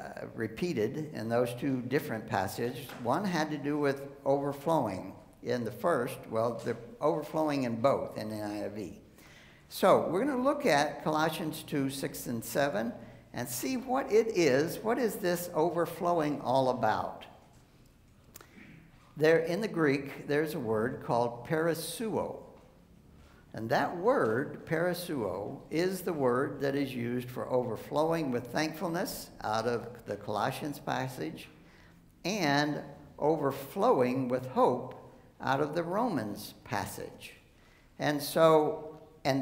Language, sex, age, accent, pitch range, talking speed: English, male, 60-79, American, 125-160 Hz, 130 wpm